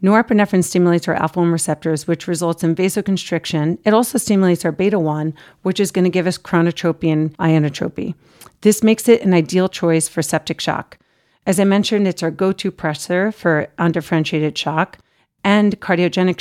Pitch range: 160-190 Hz